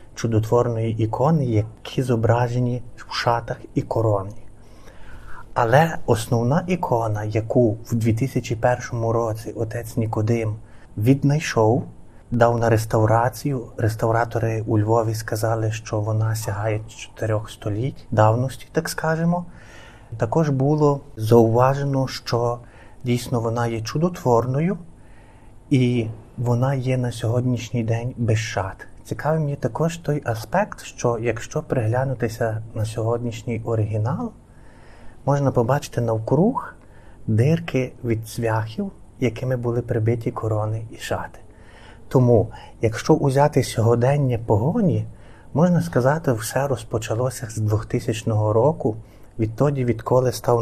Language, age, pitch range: Ukrainian, 30-49, 110-130 Hz